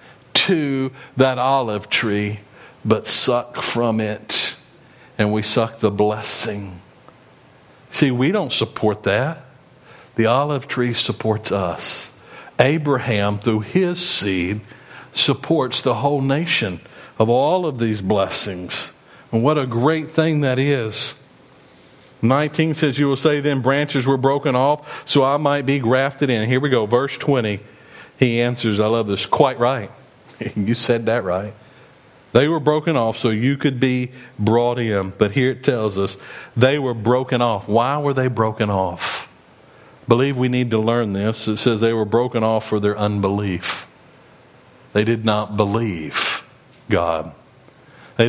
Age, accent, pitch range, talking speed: 50-69, American, 110-135 Hz, 150 wpm